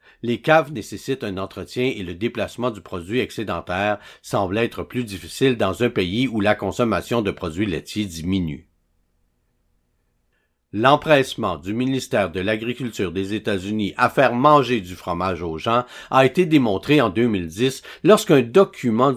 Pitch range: 90-130 Hz